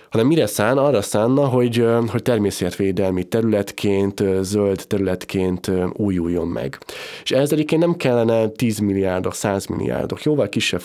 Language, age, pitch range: Hungarian, 20-39, 95-120 Hz